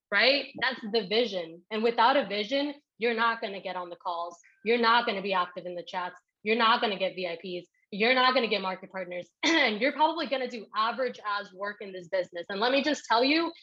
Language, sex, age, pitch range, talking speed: English, female, 20-39, 195-255 Hz, 245 wpm